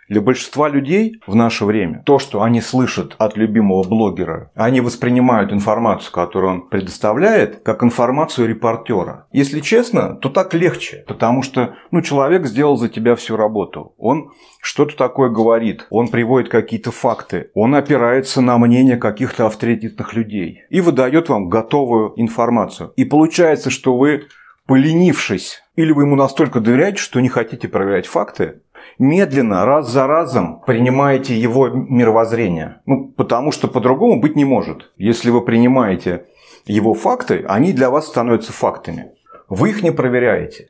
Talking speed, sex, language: 145 wpm, male, Russian